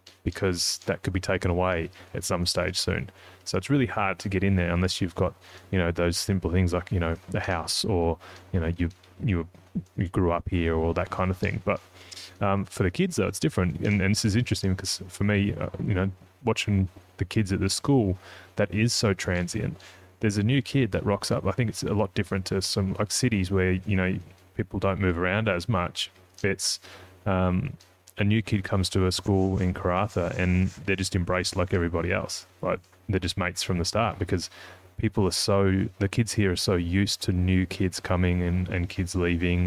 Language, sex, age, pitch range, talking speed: English, male, 20-39, 90-105 Hz, 215 wpm